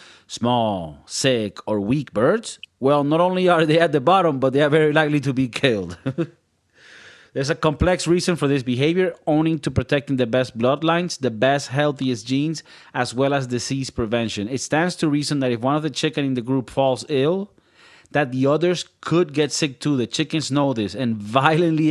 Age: 30-49